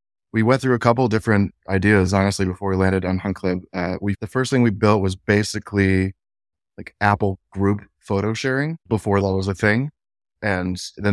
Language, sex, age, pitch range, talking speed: English, male, 20-39, 95-115 Hz, 190 wpm